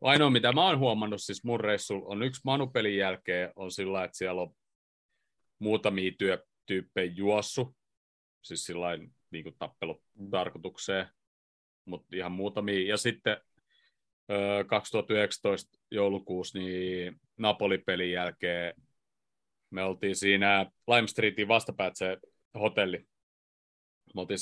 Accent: native